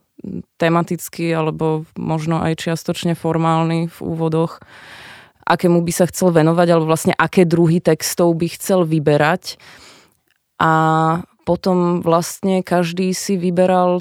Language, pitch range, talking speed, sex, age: Czech, 165-180 Hz, 115 wpm, female, 20-39